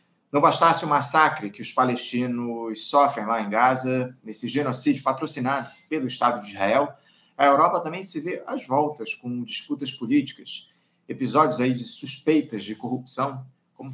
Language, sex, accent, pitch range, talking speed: Portuguese, male, Brazilian, 125-160 Hz, 150 wpm